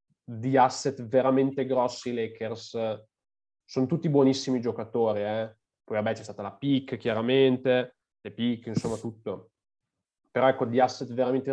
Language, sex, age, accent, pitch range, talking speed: Italian, male, 30-49, native, 115-140 Hz, 135 wpm